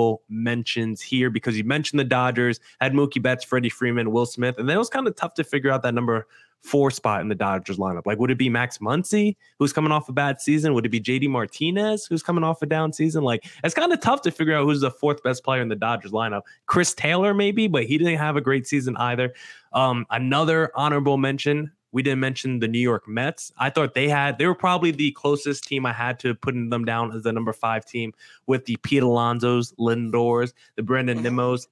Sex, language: male, English